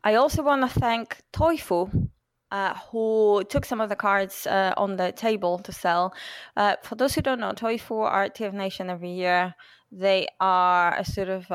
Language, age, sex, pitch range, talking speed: English, 20-39, female, 175-205 Hz, 185 wpm